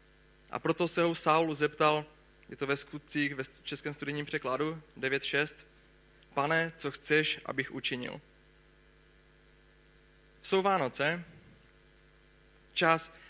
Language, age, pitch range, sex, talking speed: Czech, 30-49, 140-165 Hz, male, 105 wpm